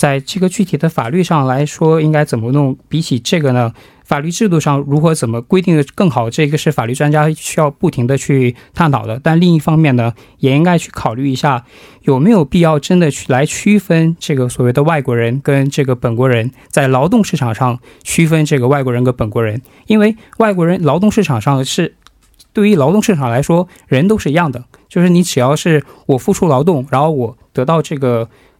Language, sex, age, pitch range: Korean, male, 20-39, 125-175 Hz